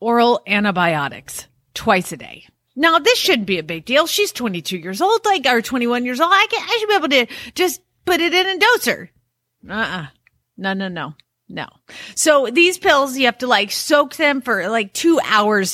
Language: English